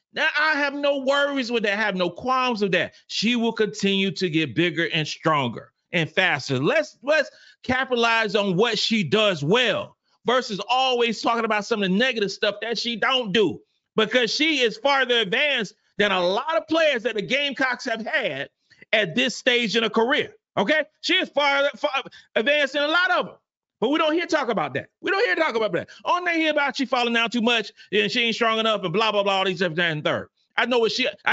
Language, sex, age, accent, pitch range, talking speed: English, male, 40-59, American, 215-275 Hz, 220 wpm